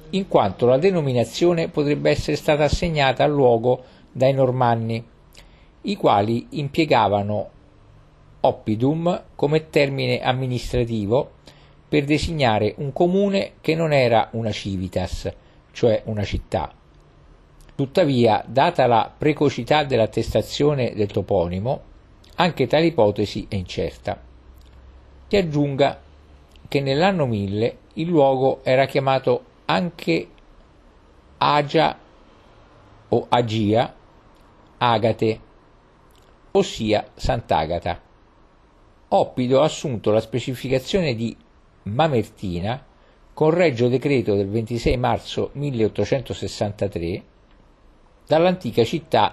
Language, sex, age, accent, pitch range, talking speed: Italian, male, 50-69, native, 105-145 Hz, 90 wpm